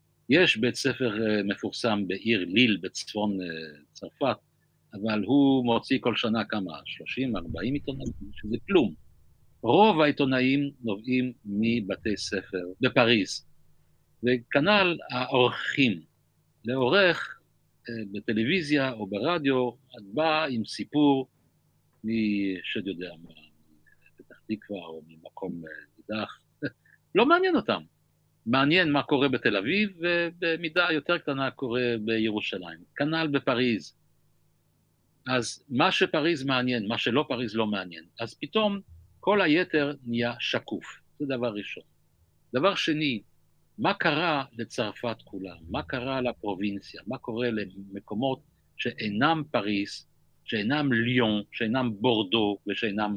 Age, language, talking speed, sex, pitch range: 50-69, Hebrew, 105 wpm, male, 100-140 Hz